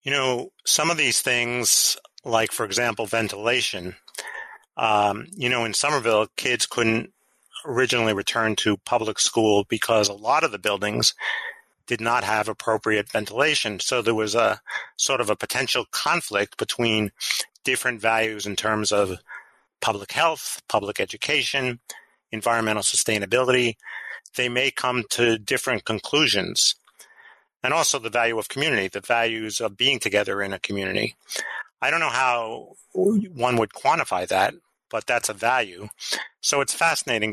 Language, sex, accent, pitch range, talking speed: English, male, American, 105-125 Hz, 145 wpm